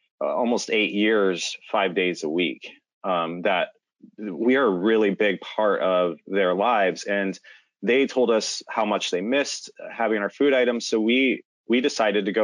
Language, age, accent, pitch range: English, 20-39, American, 95-120 Hz